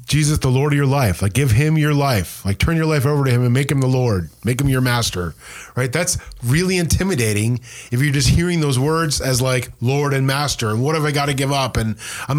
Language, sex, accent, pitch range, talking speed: English, male, American, 125-160 Hz, 250 wpm